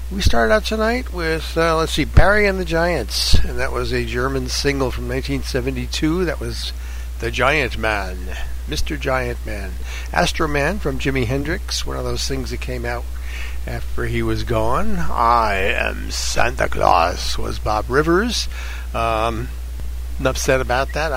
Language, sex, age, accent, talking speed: English, male, 60-79, American, 155 wpm